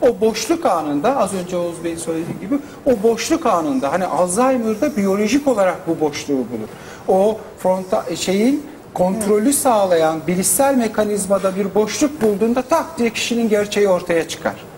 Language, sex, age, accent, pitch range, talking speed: Turkish, male, 60-79, native, 200-275 Hz, 140 wpm